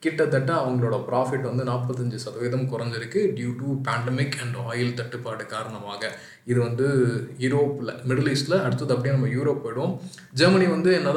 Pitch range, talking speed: 120-140 Hz, 145 wpm